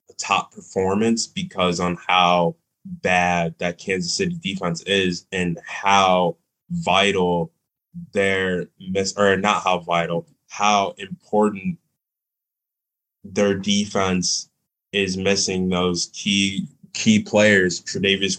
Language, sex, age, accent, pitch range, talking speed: English, male, 20-39, American, 85-100 Hz, 100 wpm